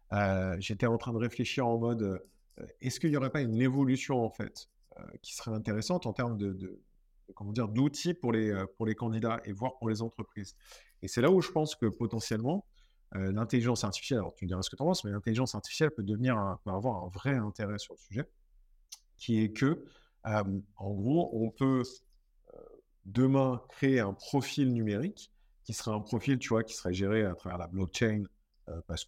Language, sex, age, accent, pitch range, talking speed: French, male, 50-69, French, 100-135 Hz, 210 wpm